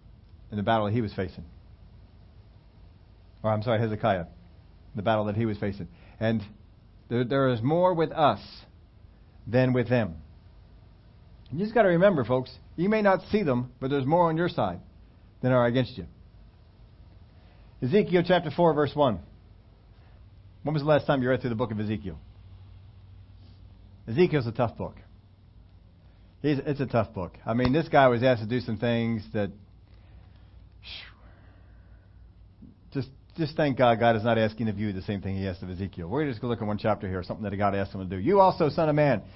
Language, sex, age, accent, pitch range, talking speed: English, male, 40-59, American, 95-150 Hz, 190 wpm